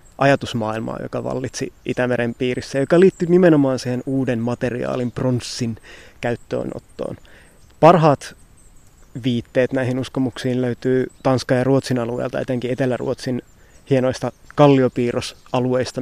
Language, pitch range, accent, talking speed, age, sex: Finnish, 120-130 Hz, native, 95 wpm, 20-39, male